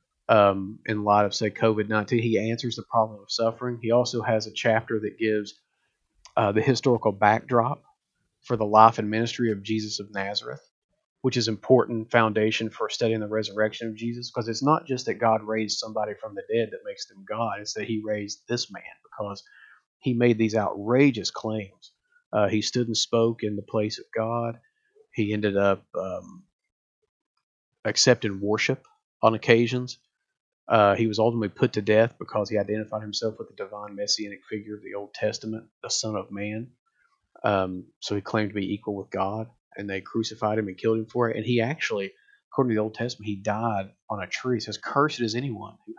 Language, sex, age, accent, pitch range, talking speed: English, male, 40-59, American, 105-120 Hz, 190 wpm